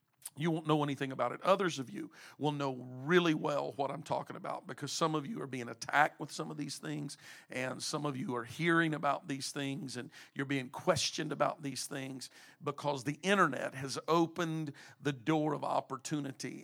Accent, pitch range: American, 140-170 Hz